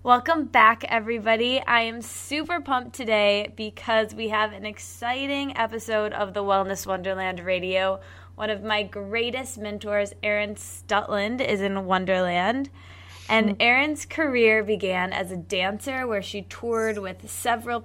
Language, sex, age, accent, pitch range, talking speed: English, female, 20-39, American, 195-240 Hz, 140 wpm